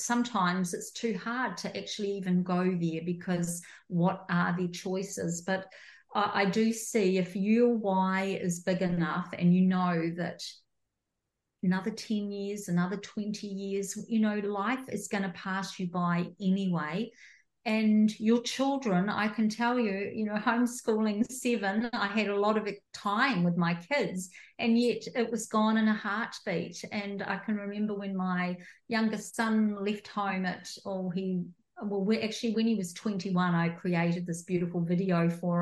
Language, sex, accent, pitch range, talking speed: English, female, Australian, 190-230 Hz, 165 wpm